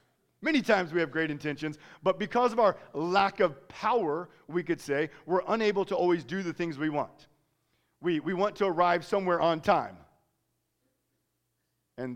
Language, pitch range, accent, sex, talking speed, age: English, 155-205 Hz, American, male, 170 wpm, 40-59